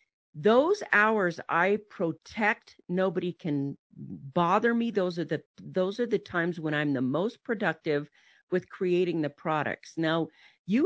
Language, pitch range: English, 165-210 Hz